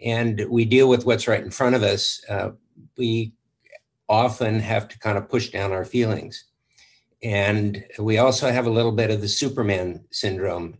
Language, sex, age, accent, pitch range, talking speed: English, male, 60-79, American, 100-120 Hz, 180 wpm